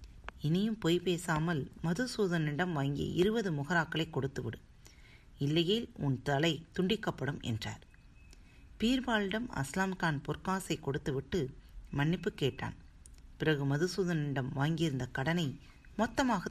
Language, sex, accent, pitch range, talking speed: Tamil, female, native, 120-175 Hz, 85 wpm